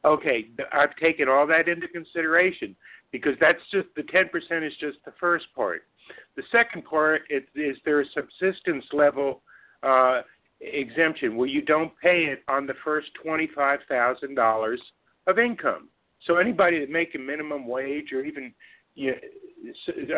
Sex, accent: male, American